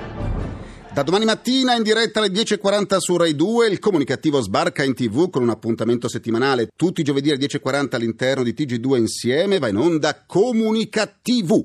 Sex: male